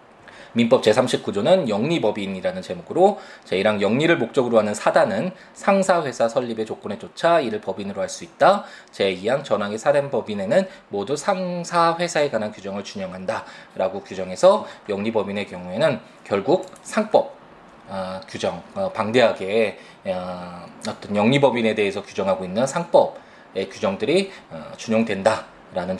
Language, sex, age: Korean, male, 20-39